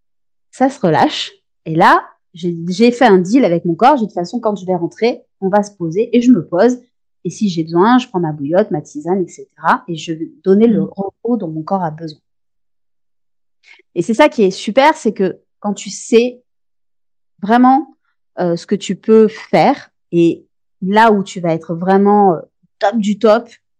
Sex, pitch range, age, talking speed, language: female, 180-245 Hz, 30-49, 195 wpm, French